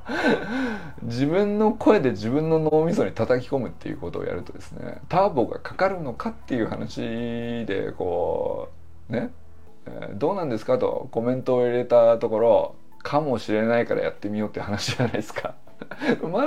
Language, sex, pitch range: Japanese, male, 105-165 Hz